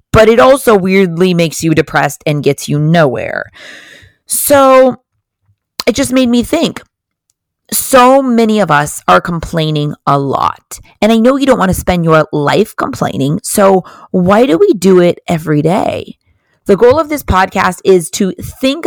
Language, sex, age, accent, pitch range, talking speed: English, female, 30-49, American, 165-225 Hz, 165 wpm